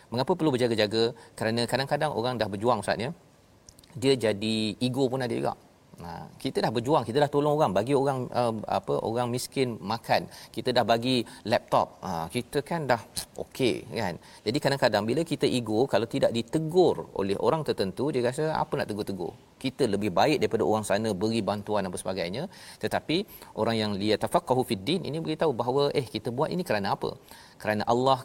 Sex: male